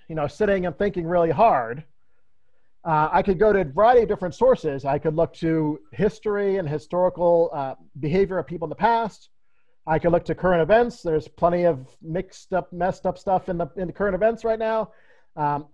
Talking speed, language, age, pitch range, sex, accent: 200 wpm, English, 40-59, 160-200 Hz, male, American